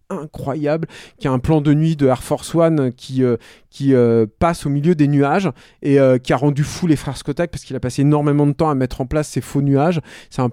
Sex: male